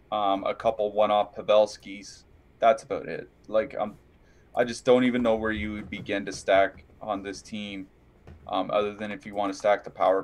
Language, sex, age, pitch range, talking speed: English, male, 20-39, 95-115 Hz, 205 wpm